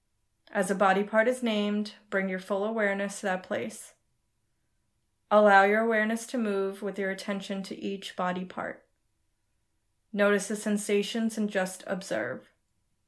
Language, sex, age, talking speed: English, female, 20-39, 140 wpm